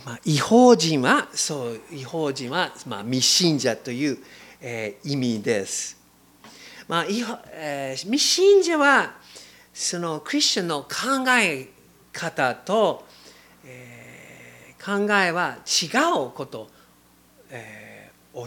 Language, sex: Japanese, male